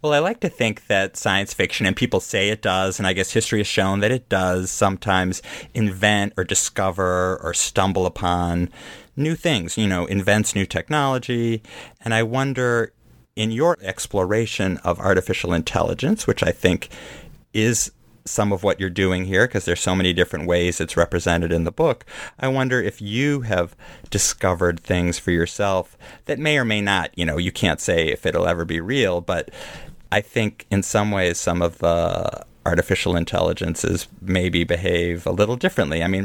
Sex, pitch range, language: male, 90-110 Hz, English